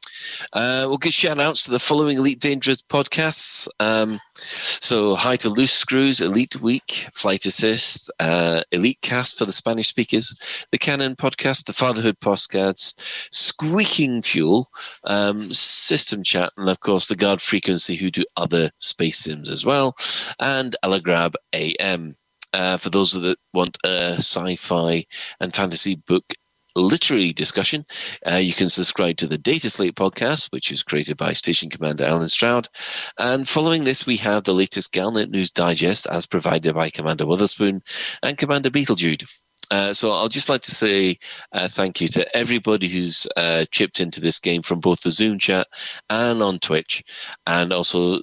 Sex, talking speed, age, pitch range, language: male, 160 wpm, 30-49, 85-125 Hz, English